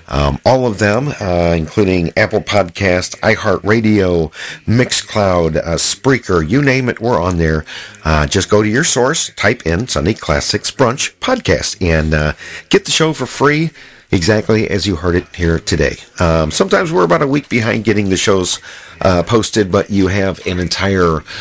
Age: 50-69